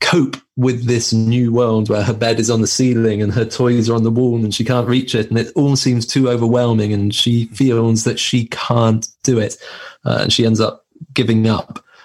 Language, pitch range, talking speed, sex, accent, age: English, 115-130 Hz, 225 wpm, male, British, 30-49